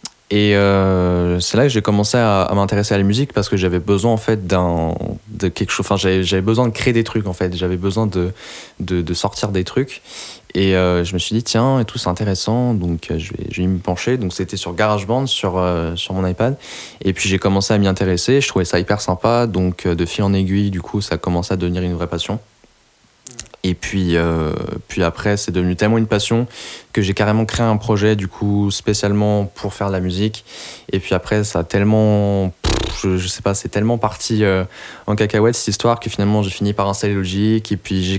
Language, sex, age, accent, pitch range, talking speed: French, male, 20-39, French, 95-110 Hz, 235 wpm